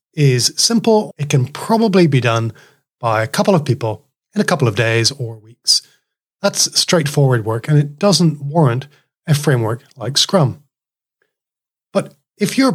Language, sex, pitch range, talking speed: English, male, 125-160 Hz, 155 wpm